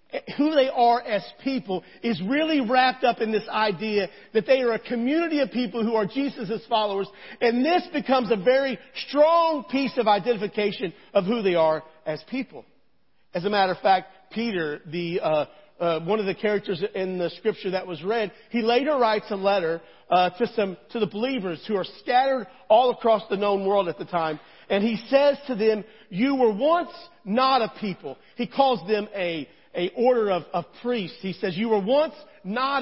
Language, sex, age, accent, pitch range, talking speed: English, male, 40-59, American, 195-250 Hz, 190 wpm